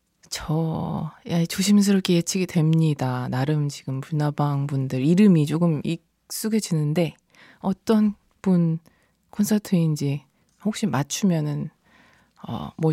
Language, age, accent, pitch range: Korean, 20-39, native, 165-225 Hz